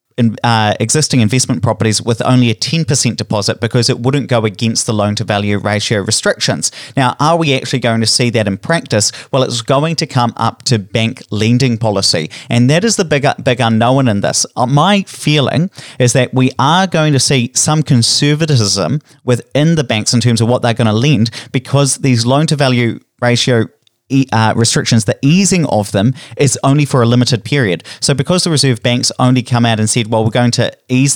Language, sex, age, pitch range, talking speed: English, male, 30-49, 110-135 Hz, 200 wpm